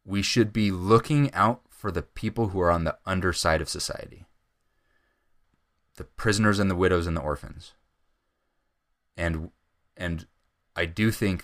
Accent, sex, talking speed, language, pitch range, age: American, male, 145 wpm, English, 80-105 Hz, 20-39